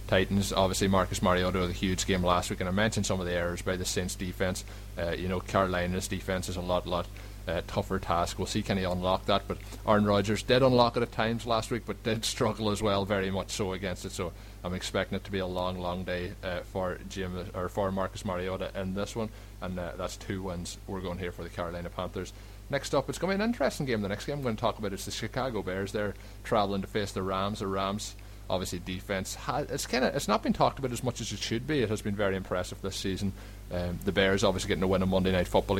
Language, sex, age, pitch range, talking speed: English, male, 20-39, 95-105 Hz, 260 wpm